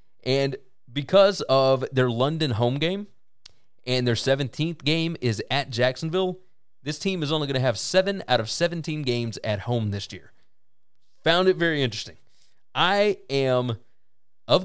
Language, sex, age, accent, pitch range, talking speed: English, male, 30-49, American, 125-170 Hz, 150 wpm